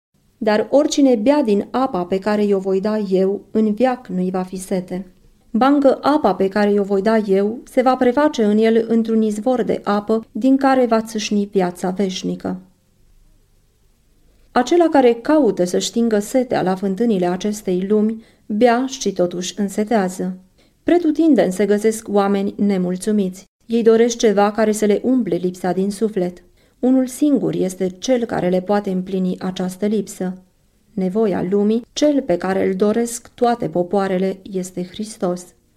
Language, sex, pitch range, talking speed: Romanian, female, 185-235 Hz, 150 wpm